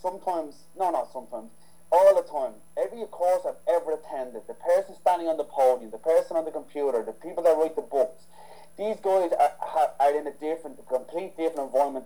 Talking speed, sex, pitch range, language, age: 200 wpm, male, 140-180 Hz, English, 30-49